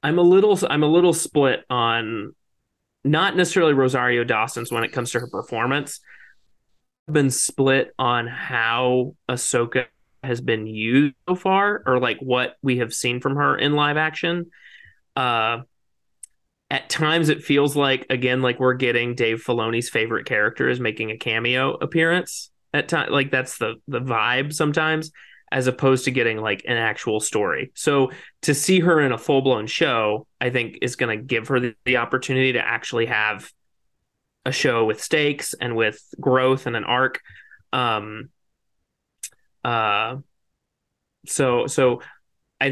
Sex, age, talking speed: male, 30-49, 155 wpm